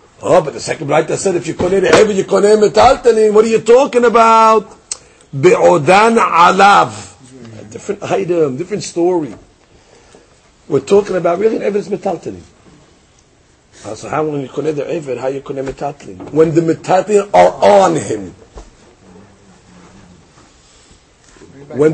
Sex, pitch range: male, 170-255 Hz